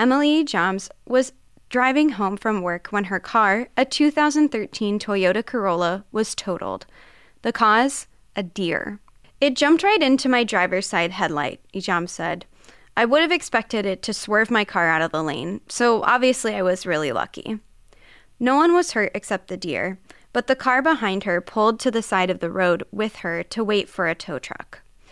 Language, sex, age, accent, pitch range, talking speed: English, female, 10-29, American, 185-250 Hz, 180 wpm